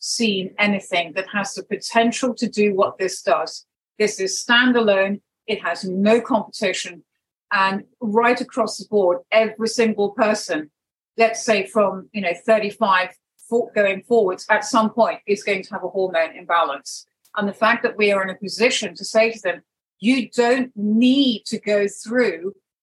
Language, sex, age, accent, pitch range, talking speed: English, female, 40-59, British, 200-230 Hz, 165 wpm